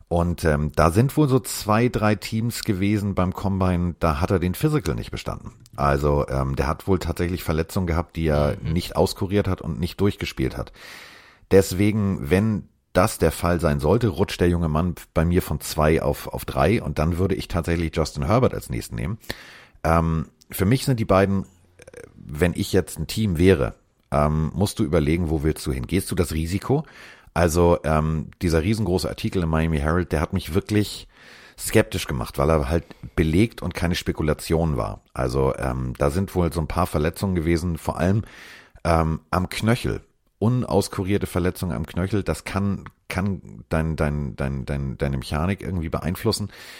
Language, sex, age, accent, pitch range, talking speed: German, male, 40-59, German, 80-100 Hz, 180 wpm